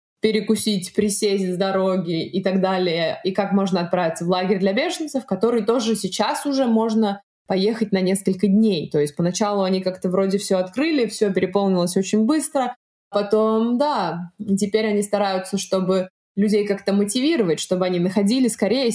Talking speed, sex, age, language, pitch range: 160 wpm, female, 20-39, Russian, 185-220 Hz